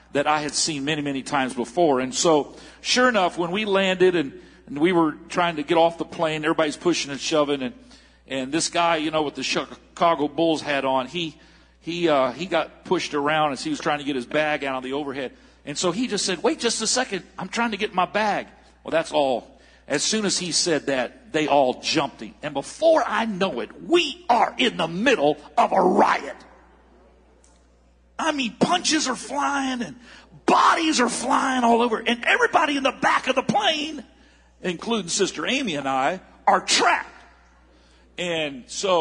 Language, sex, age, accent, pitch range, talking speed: English, male, 50-69, American, 150-240 Hz, 200 wpm